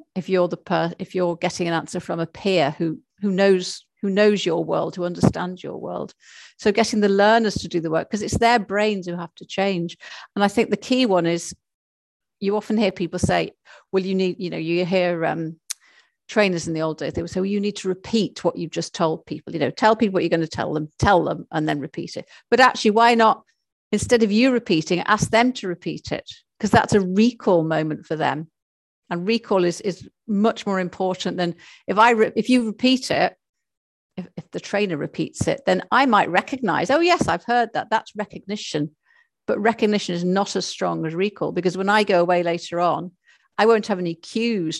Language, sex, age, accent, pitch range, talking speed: English, female, 50-69, British, 170-215 Hz, 220 wpm